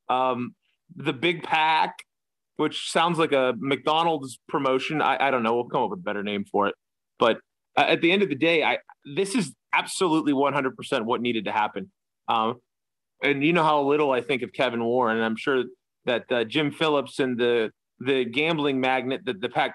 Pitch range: 125-160 Hz